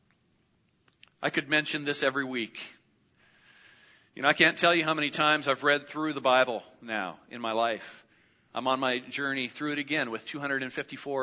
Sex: male